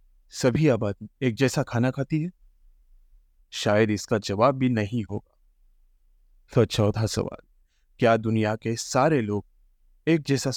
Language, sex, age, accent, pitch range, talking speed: English, male, 30-49, Indian, 85-135 Hz, 135 wpm